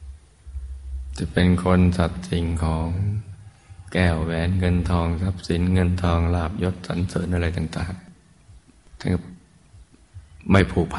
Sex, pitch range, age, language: male, 80-90 Hz, 20-39, Thai